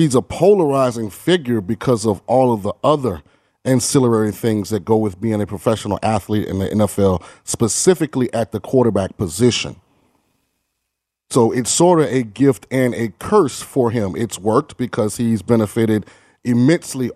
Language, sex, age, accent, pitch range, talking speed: English, male, 30-49, American, 115-140 Hz, 155 wpm